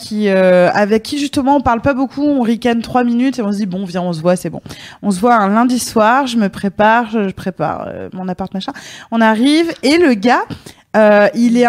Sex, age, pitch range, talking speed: female, 20-39, 185-240 Hz, 240 wpm